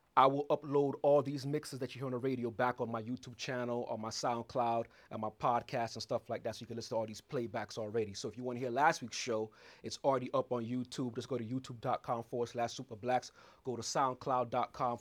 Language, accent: English, American